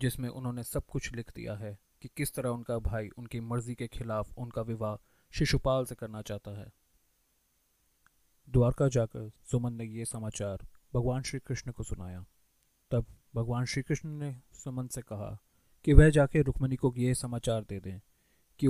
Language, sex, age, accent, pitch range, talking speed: Hindi, male, 30-49, native, 105-130 Hz, 165 wpm